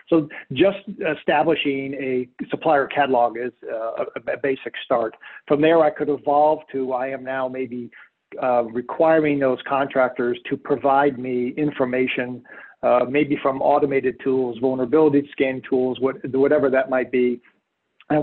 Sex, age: male, 50-69